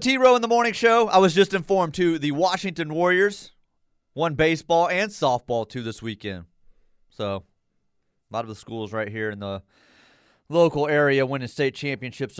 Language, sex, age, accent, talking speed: English, male, 30-49, American, 170 wpm